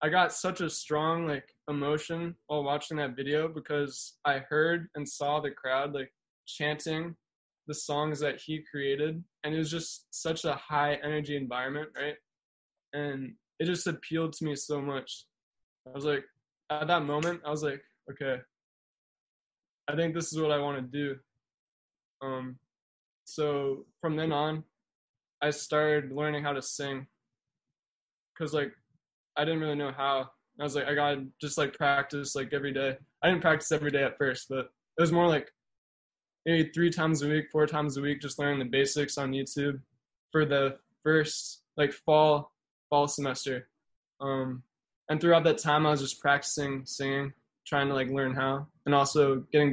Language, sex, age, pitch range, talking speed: English, male, 20-39, 135-155 Hz, 170 wpm